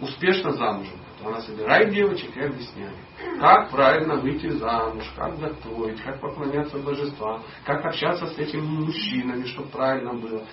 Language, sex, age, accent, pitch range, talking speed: Russian, male, 40-59, native, 145-215 Hz, 140 wpm